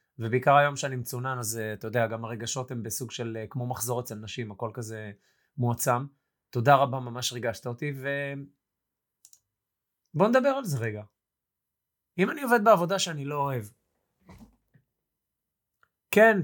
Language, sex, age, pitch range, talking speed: Hebrew, male, 20-39, 115-155 Hz, 145 wpm